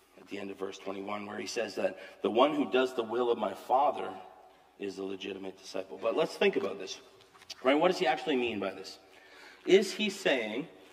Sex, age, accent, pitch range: male, 40-59, American, 95-125 Hz